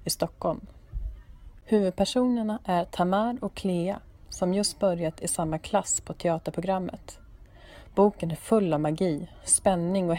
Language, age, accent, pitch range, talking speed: Swedish, 30-49, native, 165-210 Hz, 130 wpm